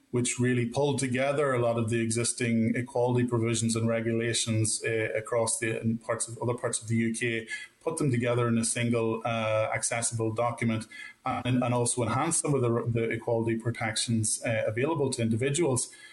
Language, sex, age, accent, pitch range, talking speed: English, male, 20-39, Irish, 115-125 Hz, 180 wpm